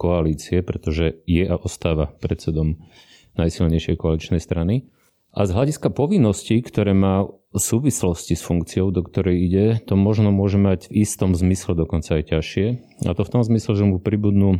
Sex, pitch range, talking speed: male, 85-100 Hz, 165 wpm